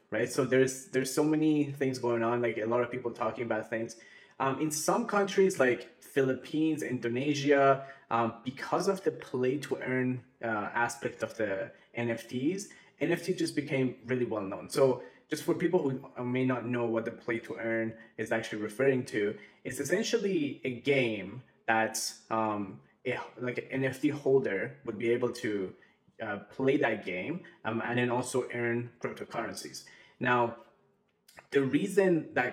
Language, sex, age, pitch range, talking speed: English, male, 20-39, 115-135 Hz, 160 wpm